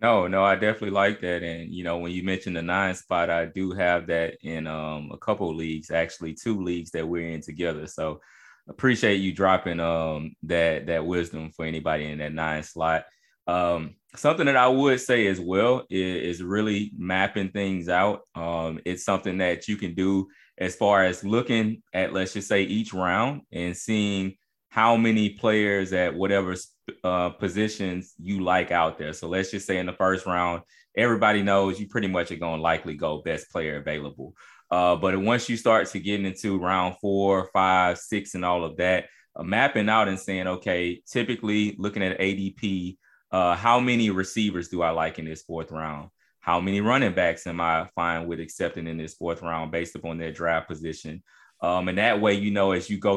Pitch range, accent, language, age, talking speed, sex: 85-100 Hz, American, English, 20-39, 195 wpm, male